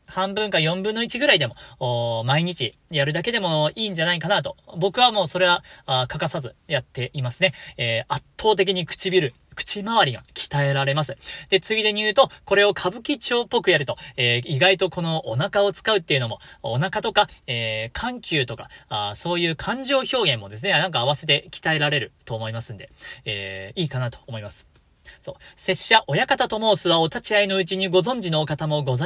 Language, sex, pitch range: Japanese, male, 140-210 Hz